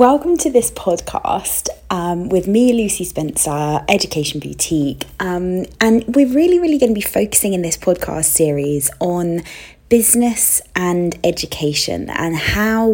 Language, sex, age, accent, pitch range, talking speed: English, female, 20-39, British, 165-215 Hz, 140 wpm